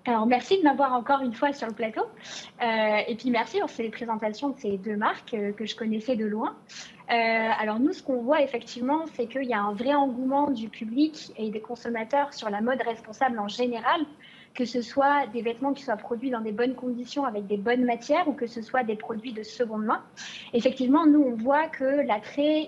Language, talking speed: French, 220 wpm